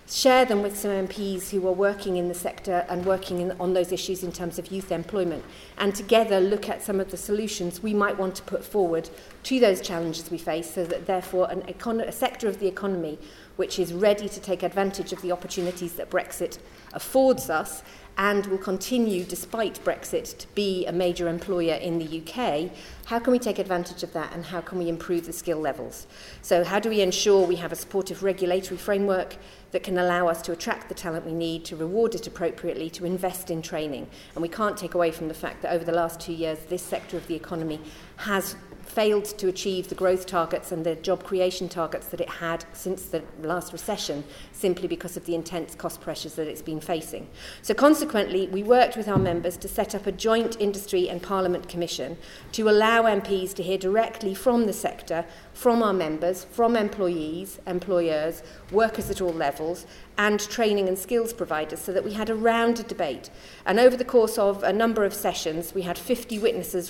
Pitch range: 170-205 Hz